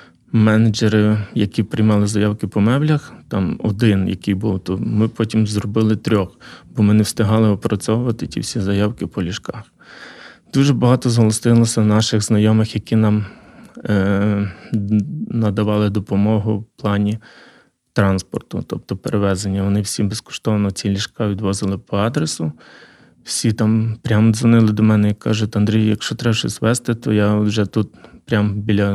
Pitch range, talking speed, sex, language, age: 105-115 Hz, 140 wpm, male, Ukrainian, 20-39